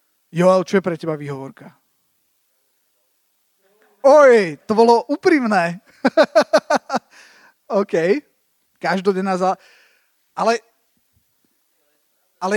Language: Slovak